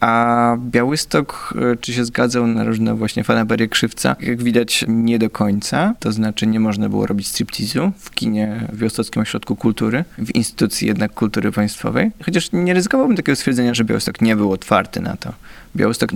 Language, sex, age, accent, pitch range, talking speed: Polish, male, 20-39, native, 110-135 Hz, 170 wpm